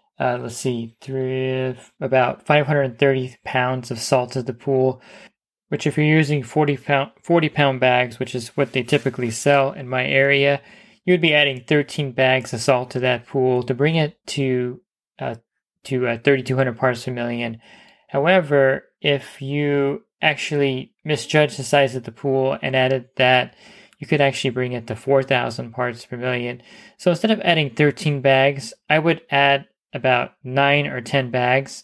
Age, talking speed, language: 20-39, 180 wpm, English